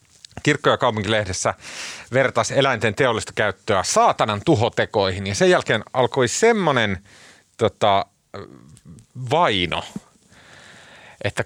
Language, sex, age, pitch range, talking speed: Finnish, male, 30-49, 95-125 Hz, 90 wpm